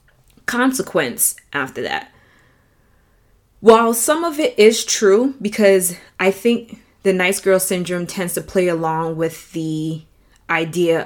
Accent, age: American, 20-39